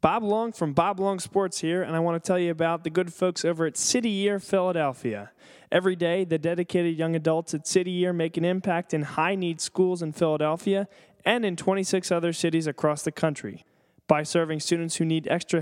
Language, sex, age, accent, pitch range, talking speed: English, male, 20-39, American, 160-195 Hz, 205 wpm